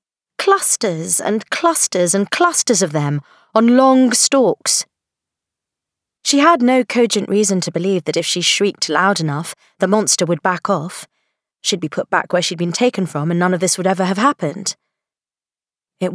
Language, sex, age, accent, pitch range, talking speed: English, female, 30-49, British, 150-210 Hz, 170 wpm